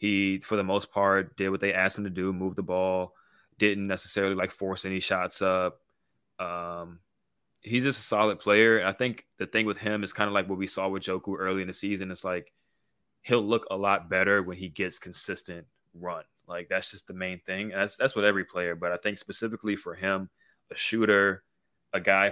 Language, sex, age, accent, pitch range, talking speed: English, male, 20-39, American, 95-100 Hz, 220 wpm